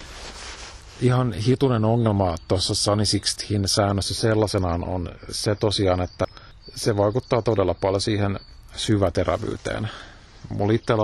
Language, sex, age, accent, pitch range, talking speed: Finnish, male, 50-69, native, 90-110 Hz, 100 wpm